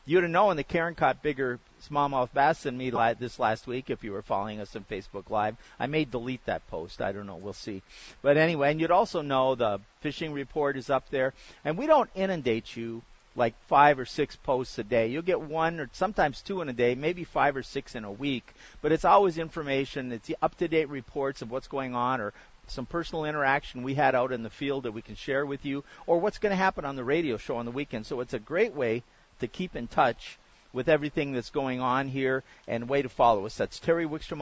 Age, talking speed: 40-59, 235 wpm